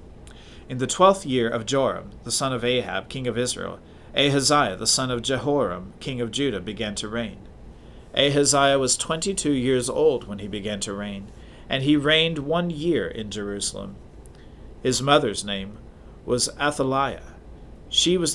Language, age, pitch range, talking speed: English, 40-59, 100-140 Hz, 155 wpm